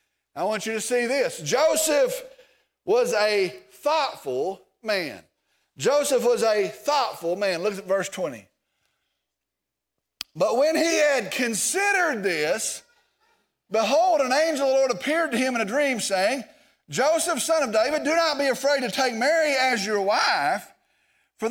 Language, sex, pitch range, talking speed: English, male, 230-315 Hz, 150 wpm